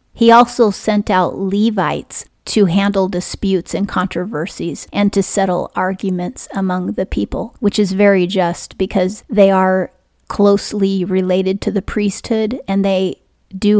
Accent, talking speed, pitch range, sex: American, 140 wpm, 185-210 Hz, female